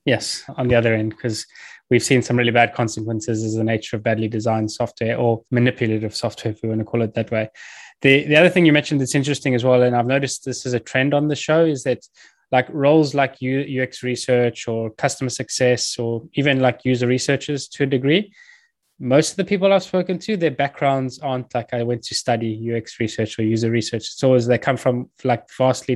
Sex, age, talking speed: male, 20-39, 220 wpm